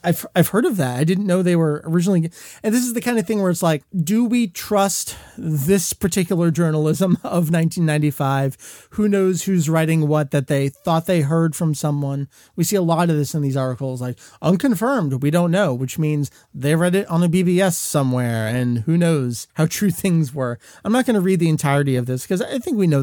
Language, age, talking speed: English, 30-49, 220 wpm